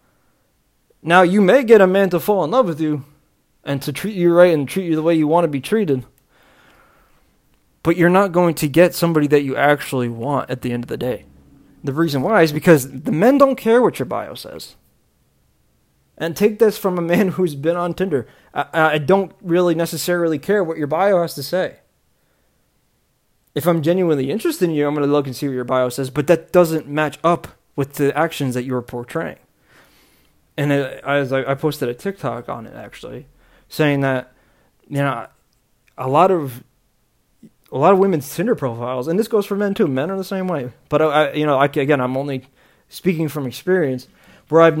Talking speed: 205 wpm